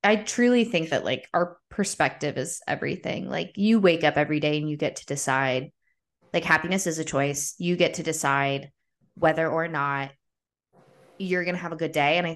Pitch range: 160-220 Hz